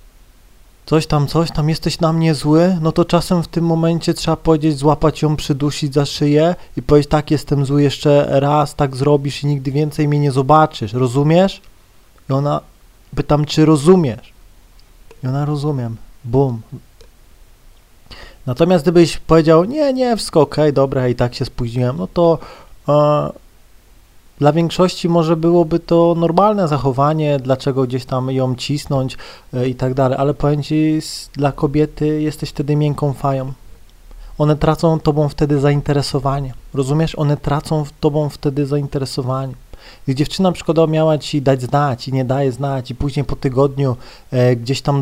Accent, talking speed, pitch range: native, 150 wpm, 130-155 Hz